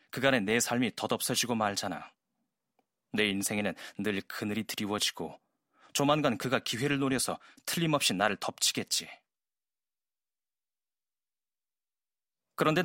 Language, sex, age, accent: Korean, male, 30-49, native